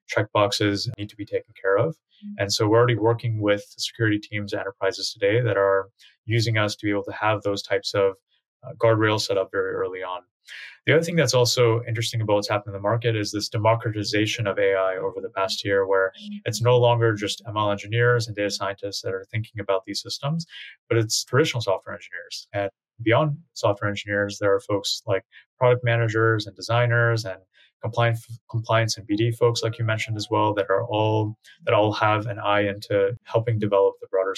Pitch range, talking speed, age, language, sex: 100-120 Hz, 200 wpm, 30-49, English, male